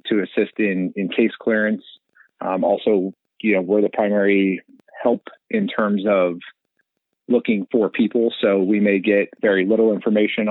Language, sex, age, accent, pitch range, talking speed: English, male, 30-49, American, 95-110 Hz, 150 wpm